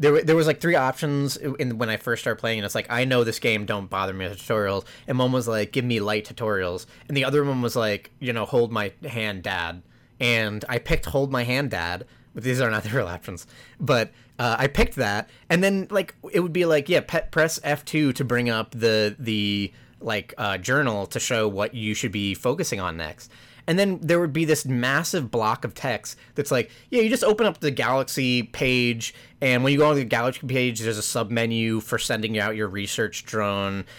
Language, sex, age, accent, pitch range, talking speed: English, male, 30-49, American, 105-145 Hz, 225 wpm